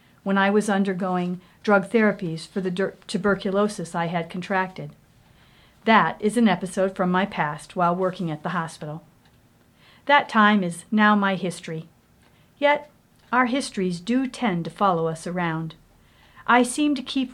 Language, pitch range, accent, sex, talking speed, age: English, 170-215 Hz, American, female, 150 wpm, 50-69